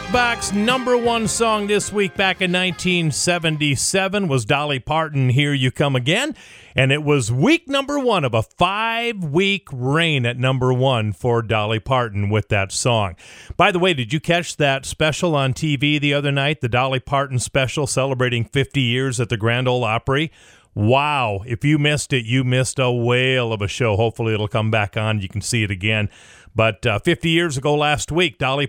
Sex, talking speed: male, 190 wpm